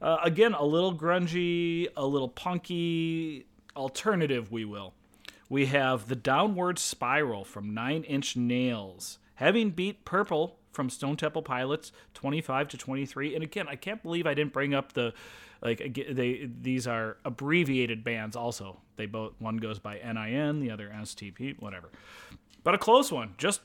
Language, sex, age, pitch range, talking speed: English, male, 30-49, 120-170 Hz, 155 wpm